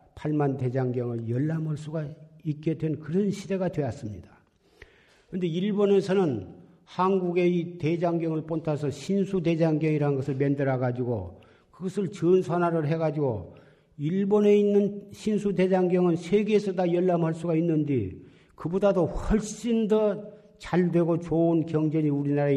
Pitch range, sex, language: 140-185 Hz, male, Korean